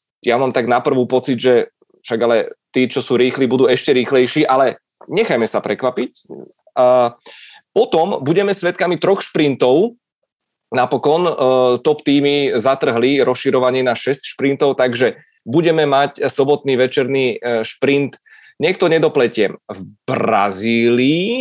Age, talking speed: 20-39, 120 wpm